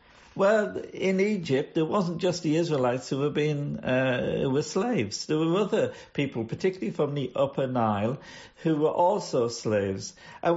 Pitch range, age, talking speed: 125-180 Hz, 50-69, 165 wpm